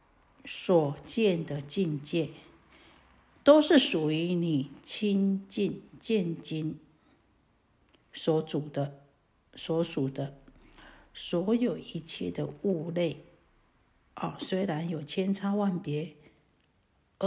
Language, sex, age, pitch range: Chinese, female, 50-69, 160-210 Hz